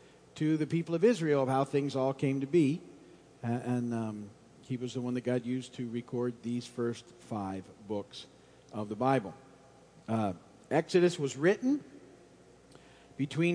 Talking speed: 160 wpm